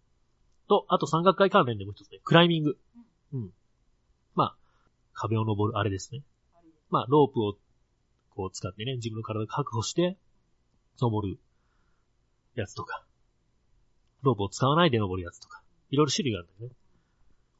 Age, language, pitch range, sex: 40-59, Japanese, 100-135 Hz, male